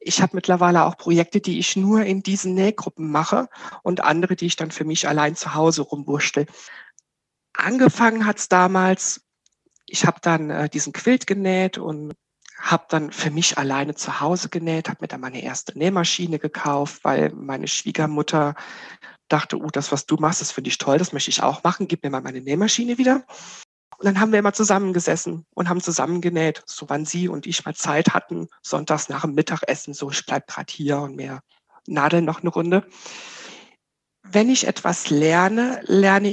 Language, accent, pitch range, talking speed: German, German, 150-190 Hz, 180 wpm